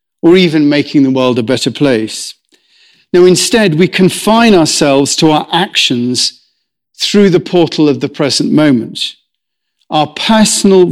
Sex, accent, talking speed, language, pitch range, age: male, British, 135 wpm, English, 145-180 Hz, 50-69